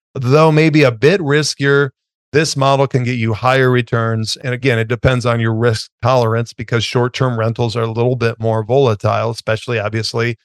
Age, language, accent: 40-59, English, American